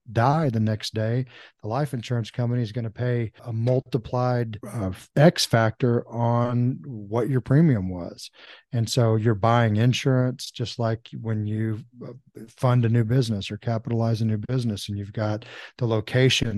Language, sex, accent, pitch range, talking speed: English, male, American, 110-125 Hz, 165 wpm